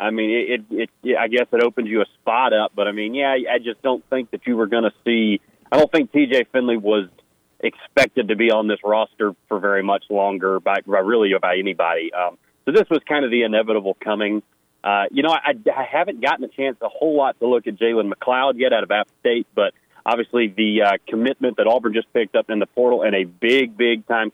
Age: 40-59